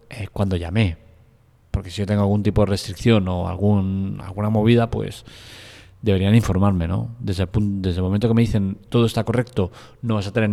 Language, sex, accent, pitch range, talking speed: Spanish, male, Spanish, 95-115 Hz, 195 wpm